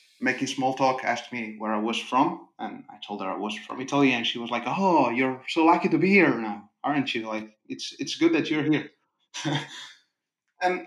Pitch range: 115-140 Hz